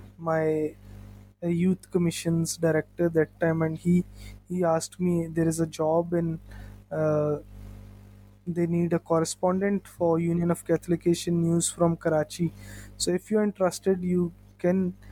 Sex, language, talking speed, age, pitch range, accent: male, English, 135 wpm, 20-39, 145-175 Hz, Indian